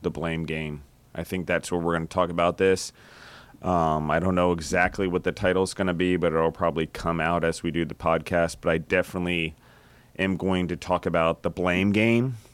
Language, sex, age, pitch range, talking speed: English, male, 30-49, 85-95 Hz, 220 wpm